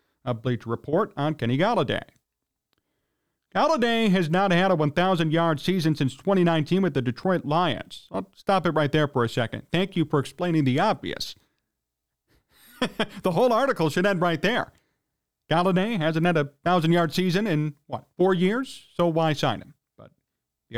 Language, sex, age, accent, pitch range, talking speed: English, male, 40-59, American, 145-195 Hz, 160 wpm